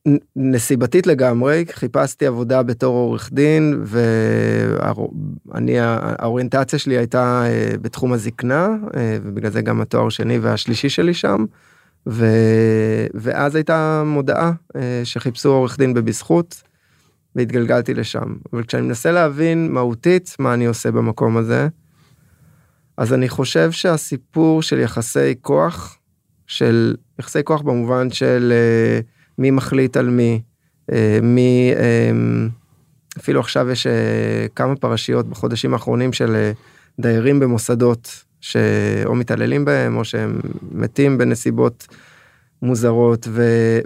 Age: 20-39